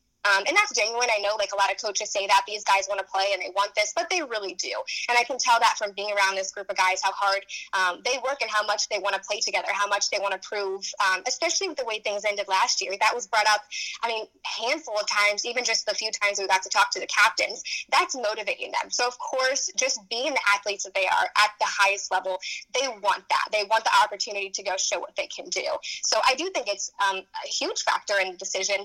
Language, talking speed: English, 270 wpm